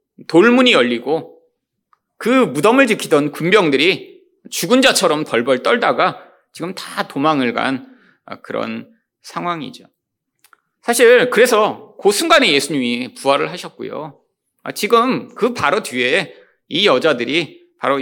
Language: Korean